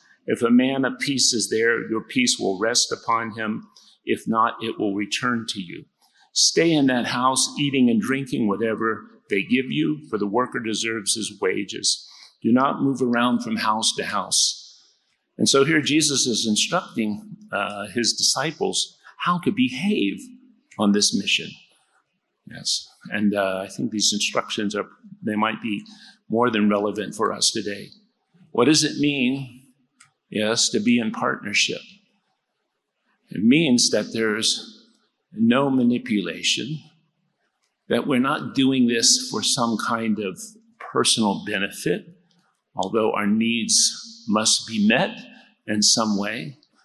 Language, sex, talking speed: English, male, 145 wpm